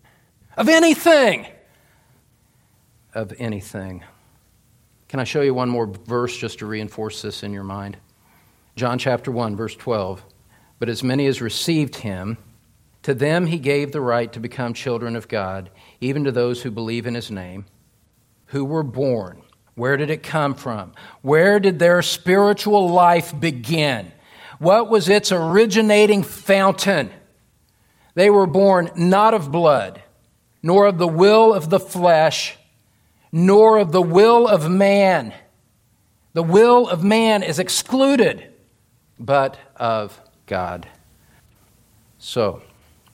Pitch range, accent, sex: 110-165 Hz, American, male